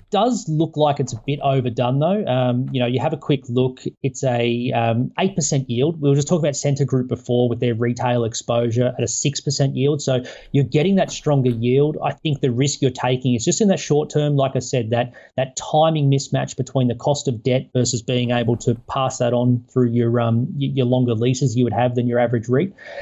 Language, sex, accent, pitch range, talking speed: English, male, Australian, 125-150 Hz, 225 wpm